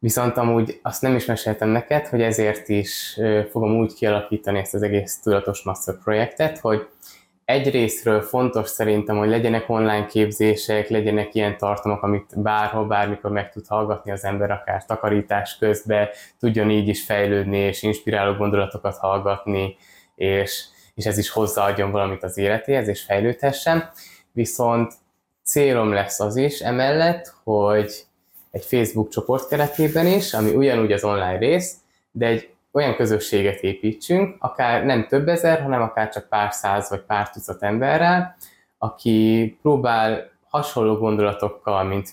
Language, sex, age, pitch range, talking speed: Hungarian, male, 20-39, 100-120 Hz, 140 wpm